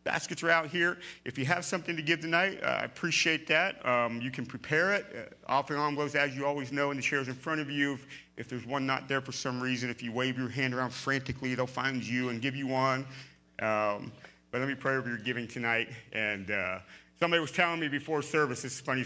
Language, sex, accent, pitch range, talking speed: English, male, American, 105-145 Hz, 245 wpm